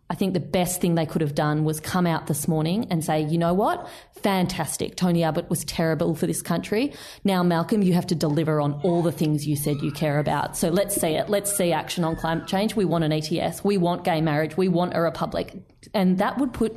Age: 20-39